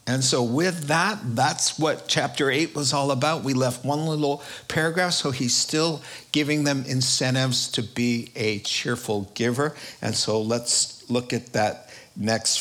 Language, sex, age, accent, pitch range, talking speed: English, male, 50-69, American, 120-150 Hz, 160 wpm